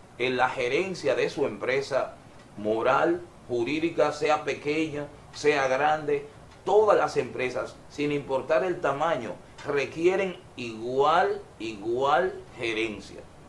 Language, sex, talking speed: Spanish, male, 100 wpm